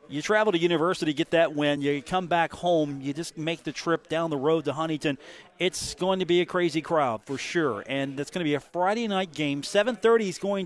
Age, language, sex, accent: 40-59, English, male, American